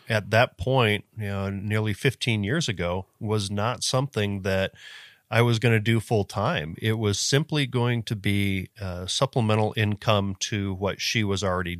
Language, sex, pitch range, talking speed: English, male, 100-120 Hz, 175 wpm